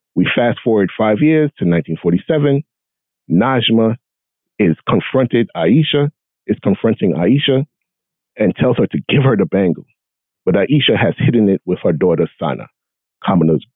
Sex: male